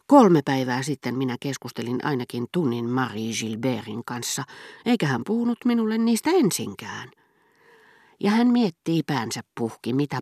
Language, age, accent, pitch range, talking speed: Finnish, 40-59, native, 125-185 Hz, 130 wpm